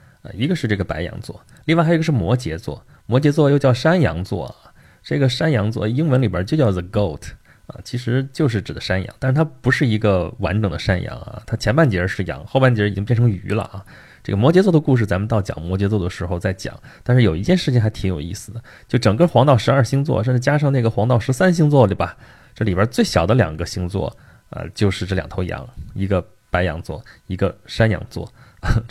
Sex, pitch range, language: male, 95-130 Hz, Chinese